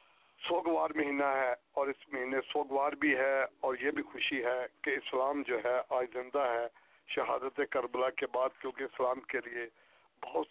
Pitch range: 130-145 Hz